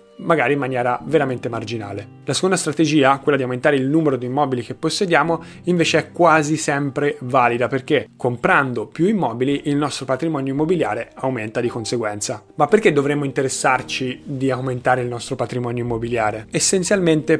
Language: Italian